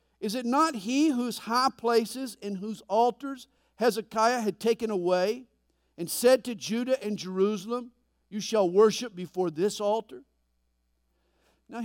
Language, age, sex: English, 50-69, male